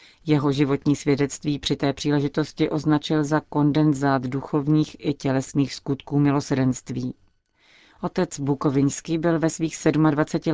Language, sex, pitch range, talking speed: Czech, female, 140-155 Hz, 115 wpm